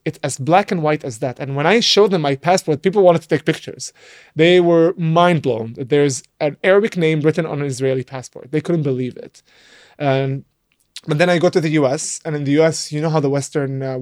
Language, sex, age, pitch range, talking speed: English, male, 20-39, 140-180 Hz, 230 wpm